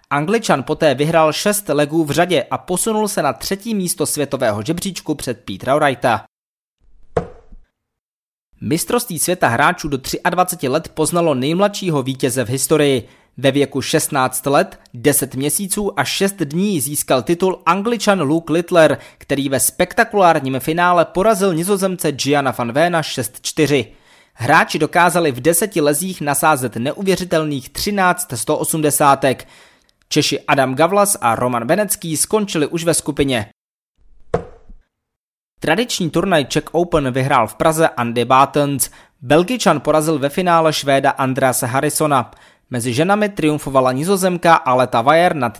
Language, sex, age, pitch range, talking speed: Czech, male, 20-39, 135-175 Hz, 125 wpm